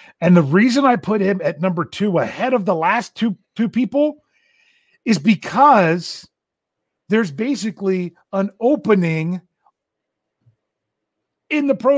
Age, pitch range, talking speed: 40-59, 150-210 Hz, 125 wpm